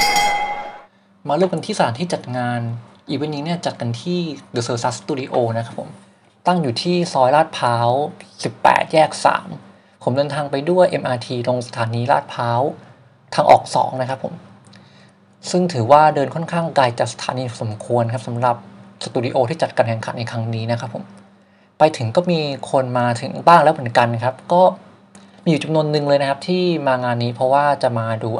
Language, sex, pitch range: Thai, male, 120-170 Hz